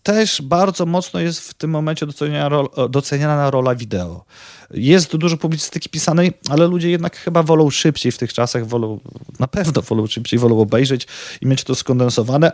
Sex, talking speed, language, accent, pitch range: male, 170 wpm, Polish, native, 125-155 Hz